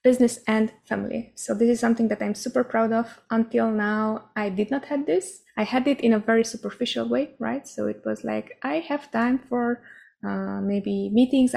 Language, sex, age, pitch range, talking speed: English, female, 20-39, 200-240 Hz, 200 wpm